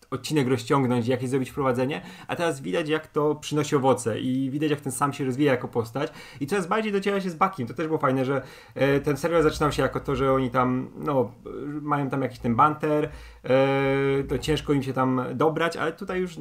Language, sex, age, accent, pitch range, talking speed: Polish, male, 30-49, native, 135-170 Hz, 210 wpm